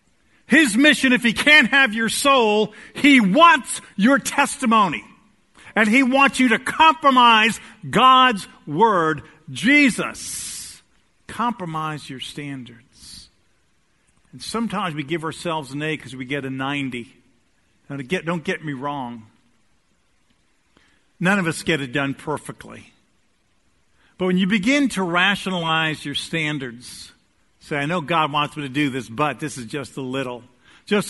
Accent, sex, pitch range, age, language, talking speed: American, male, 135-200 Hz, 50-69, English, 140 wpm